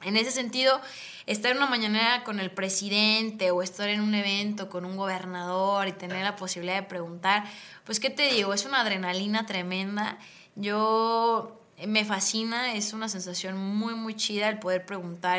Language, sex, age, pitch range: English, female, 20-39, 190-225 Hz